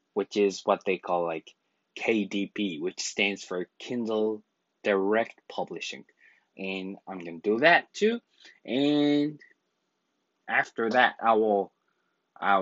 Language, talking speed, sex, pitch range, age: English, 120 wpm, male, 95-120 Hz, 20-39